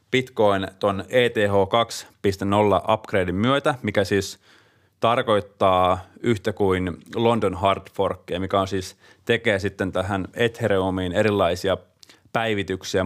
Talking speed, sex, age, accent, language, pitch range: 100 wpm, male, 30-49, native, Finnish, 95-115 Hz